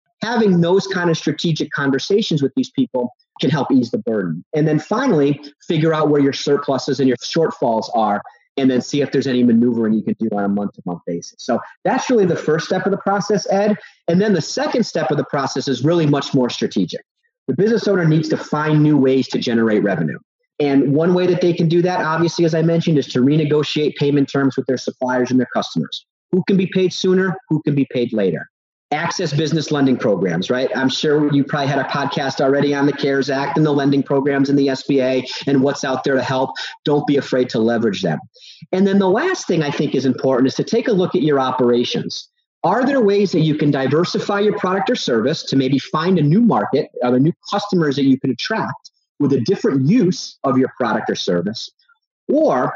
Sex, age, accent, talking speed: male, 30-49, American, 220 wpm